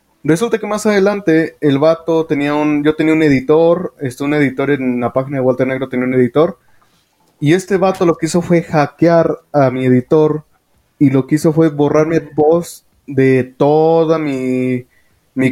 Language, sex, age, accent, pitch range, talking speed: Spanish, male, 20-39, Mexican, 130-160 Hz, 180 wpm